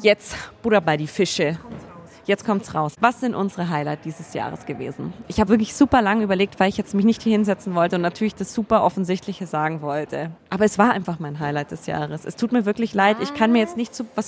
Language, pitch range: German, 170-215 Hz